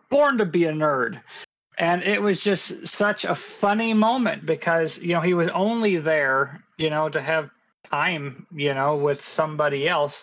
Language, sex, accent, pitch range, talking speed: English, male, American, 140-170 Hz, 175 wpm